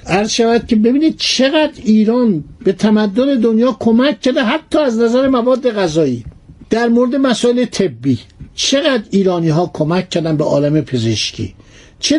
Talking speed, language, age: 145 wpm, Persian, 60-79